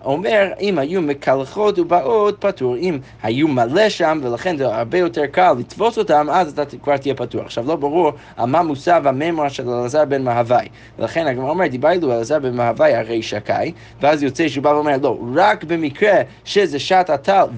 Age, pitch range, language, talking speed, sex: 20-39, 125-180 Hz, Hebrew, 180 wpm, male